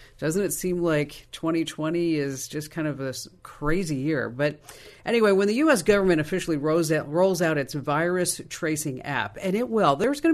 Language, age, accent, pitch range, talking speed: English, 50-69, American, 135-175 Hz, 180 wpm